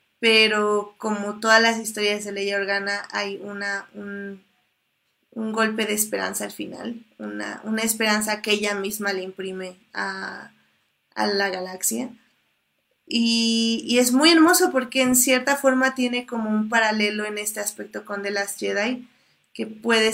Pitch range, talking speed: 195-225 Hz, 150 wpm